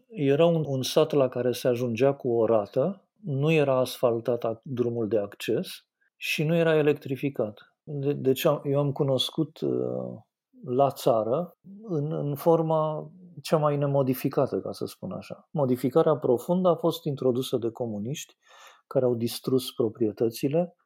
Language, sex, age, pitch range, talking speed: Romanian, male, 50-69, 125-160 Hz, 145 wpm